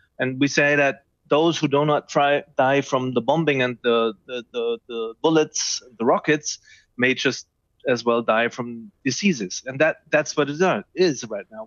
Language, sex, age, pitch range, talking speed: English, male, 30-49, 120-155 Hz, 175 wpm